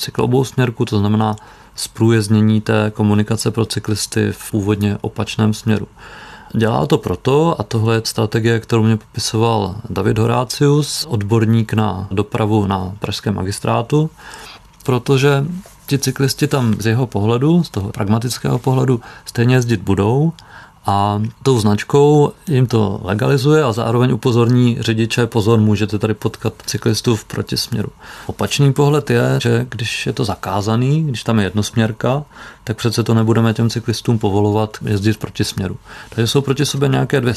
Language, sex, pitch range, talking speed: Czech, male, 105-130 Hz, 140 wpm